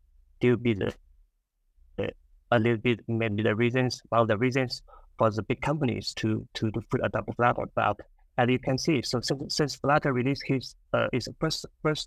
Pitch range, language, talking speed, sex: 105-130 Hz, English, 205 wpm, male